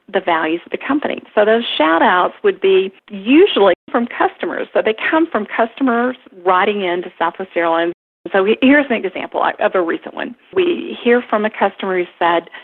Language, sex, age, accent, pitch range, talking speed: English, female, 40-59, American, 190-260 Hz, 175 wpm